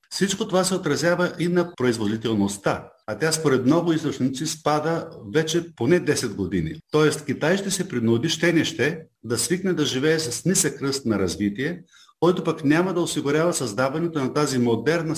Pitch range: 115-155 Hz